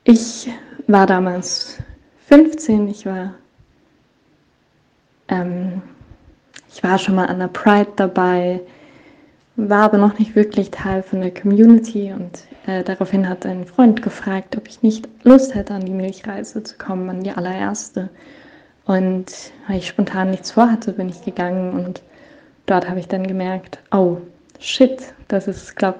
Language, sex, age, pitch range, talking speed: German, female, 20-39, 185-215 Hz, 145 wpm